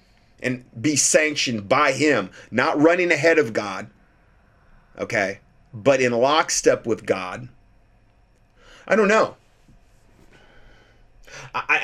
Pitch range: 115-150 Hz